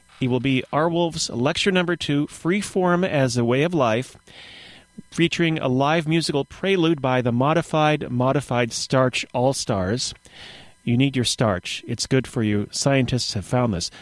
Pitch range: 120-155 Hz